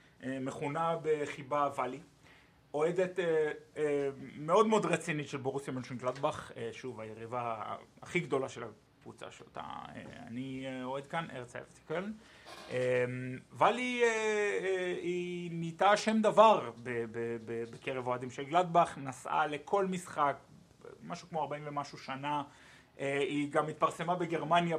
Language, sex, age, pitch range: Hebrew, male, 30-49, 125-155 Hz